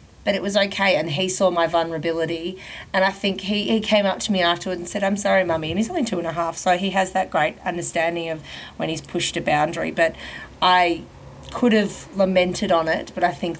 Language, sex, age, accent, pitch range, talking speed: English, female, 30-49, Australian, 165-205 Hz, 235 wpm